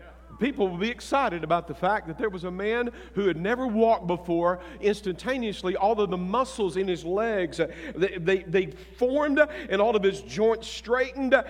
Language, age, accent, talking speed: English, 50-69, American, 175 wpm